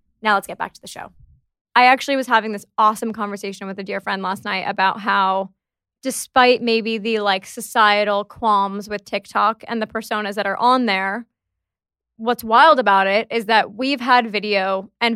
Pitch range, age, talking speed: 205-245 Hz, 20-39, 185 wpm